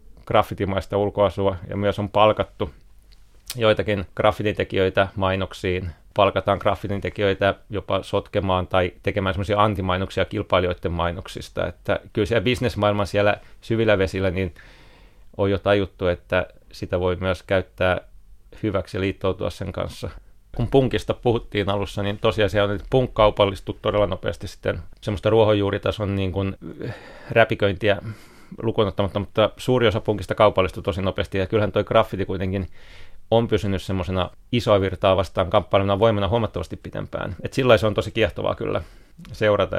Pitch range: 95-110 Hz